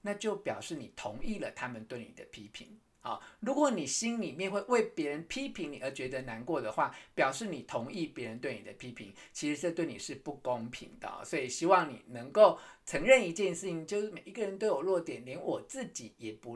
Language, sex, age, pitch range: Chinese, male, 50-69, 150-215 Hz